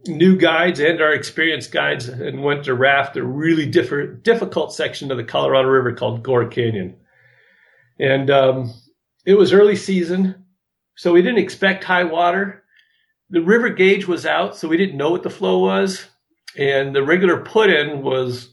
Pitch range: 125-175 Hz